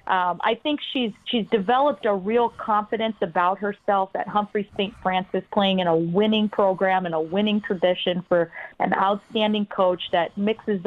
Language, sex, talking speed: English, female, 165 wpm